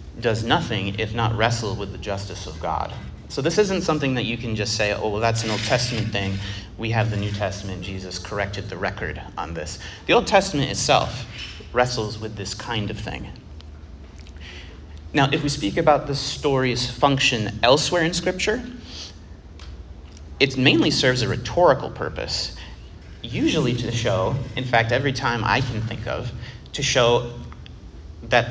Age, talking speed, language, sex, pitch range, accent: 30-49, 165 wpm, English, male, 95-130 Hz, American